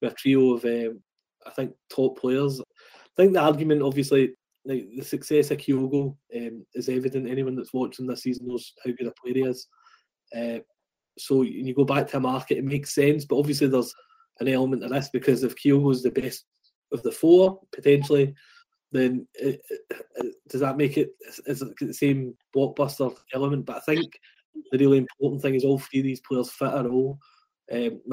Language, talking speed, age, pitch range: English, 195 wpm, 20-39, 125-140 Hz